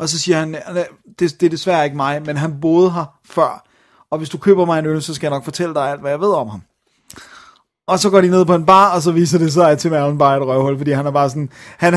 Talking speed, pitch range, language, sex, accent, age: 300 wpm, 145-175 Hz, Danish, male, native, 30-49